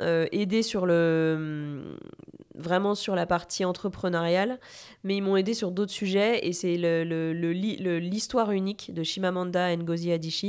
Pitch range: 175-210 Hz